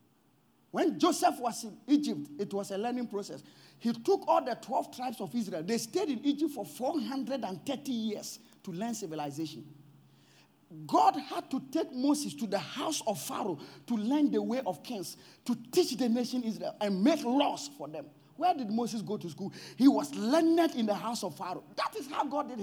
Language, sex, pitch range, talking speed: English, male, 170-260 Hz, 195 wpm